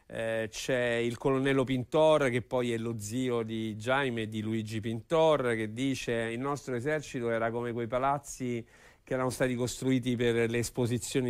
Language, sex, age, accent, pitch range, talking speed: Italian, male, 50-69, native, 115-145 Hz, 165 wpm